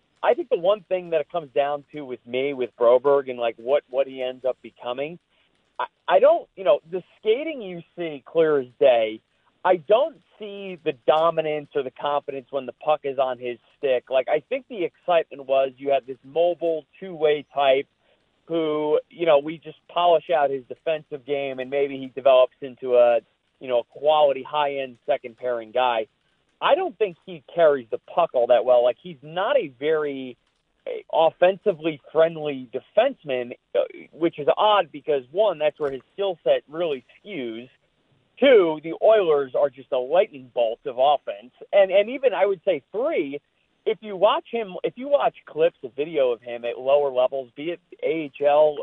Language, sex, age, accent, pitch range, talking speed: English, male, 40-59, American, 135-180 Hz, 185 wpm